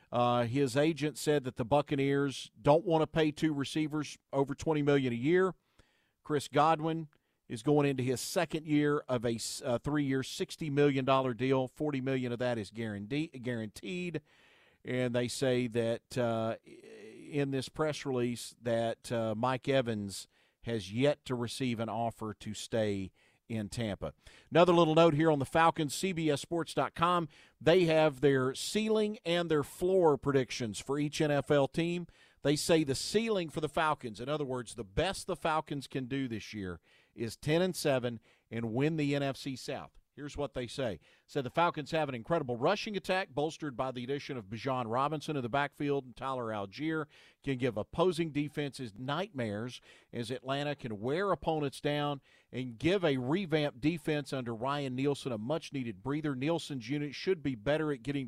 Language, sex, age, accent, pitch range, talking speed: English, male, 50-69, American, 125-155 Hz, 170 wpm